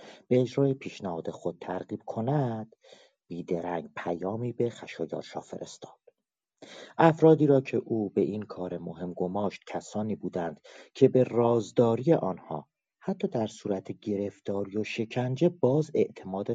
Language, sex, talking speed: Persian, male, 120 wpm